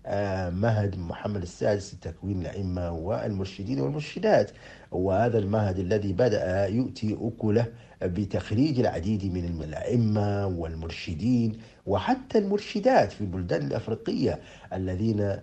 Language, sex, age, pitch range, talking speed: English, male, 50-69, 90-120 Hz, 95 wpm